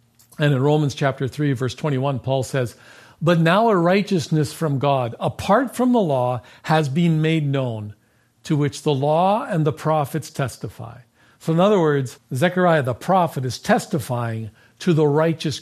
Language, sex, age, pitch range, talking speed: English, male, 50-69, 125-165 Hz, 165 wpm